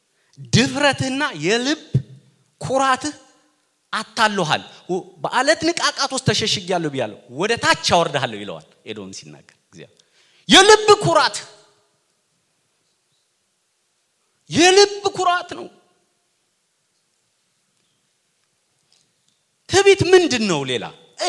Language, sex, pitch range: English, male, 170-265 Hz